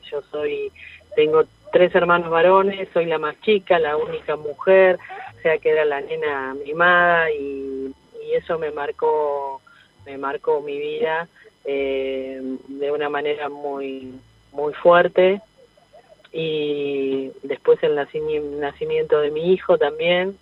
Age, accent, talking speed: 30-49, Argentinian, 130 wpm